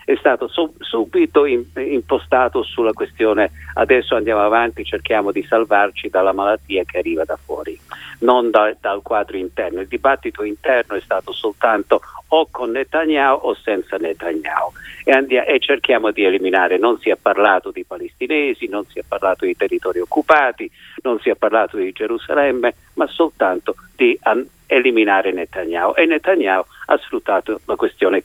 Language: Italian